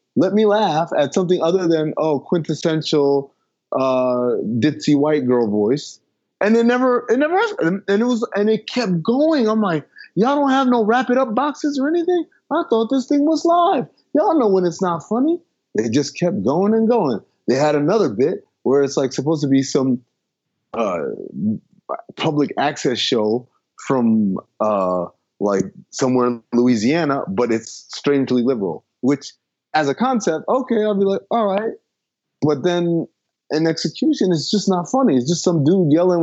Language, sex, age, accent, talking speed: English, male, 30-49, American, 175 wpm